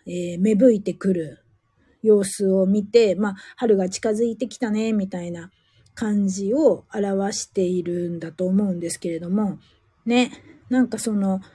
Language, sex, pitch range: Japanese, female, 180-245 Hz